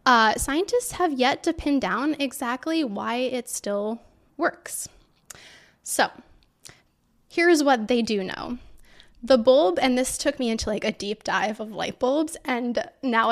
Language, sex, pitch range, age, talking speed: English, female, 215-270 Hz, 10-29, 155 wpm